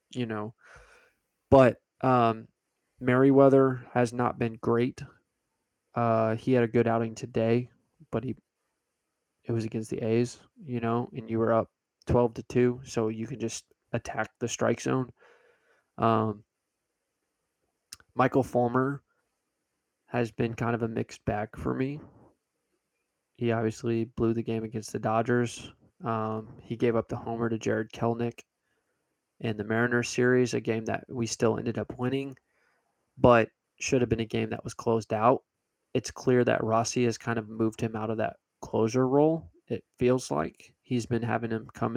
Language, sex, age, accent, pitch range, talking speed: English, male, 20-39, American, 110-125 Hz, 160 wpm